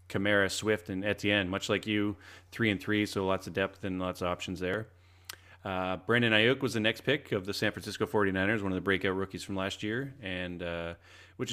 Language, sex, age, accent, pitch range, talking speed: English, male, 30-49, American, 90-110 Hz, 220 wpm